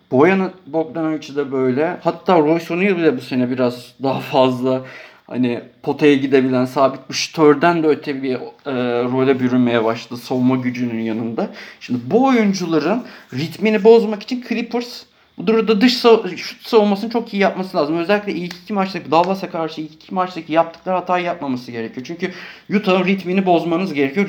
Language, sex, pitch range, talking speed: Turkish, male, 135-195 Hz, 160 wpm